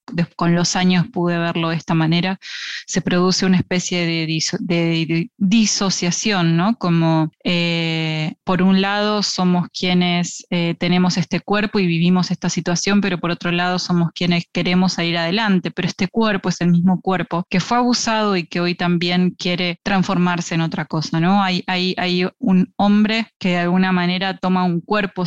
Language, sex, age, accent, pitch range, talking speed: Spanish, female, 20-39, Argentinian, 175-190 Hz, 180 wpm